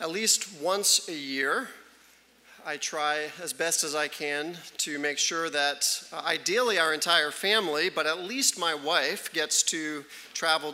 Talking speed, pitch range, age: 160 wpm, 140-165 Hz, 40-59